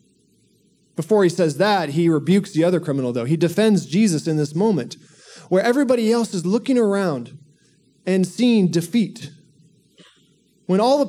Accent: American